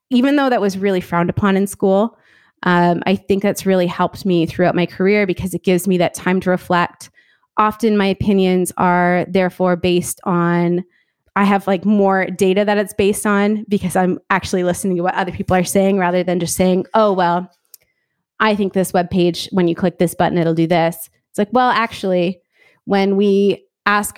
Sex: female